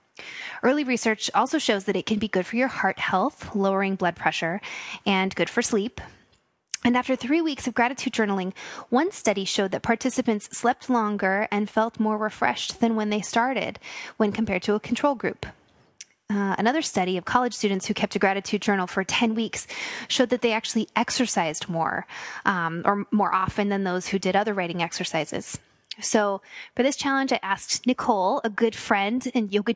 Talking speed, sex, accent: 185 wpm, female, American